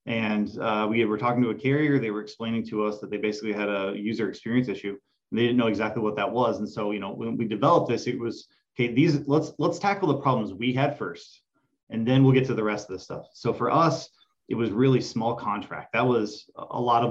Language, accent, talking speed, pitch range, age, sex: English, American, 255 wpm, 100-120 Hz, 20-39, male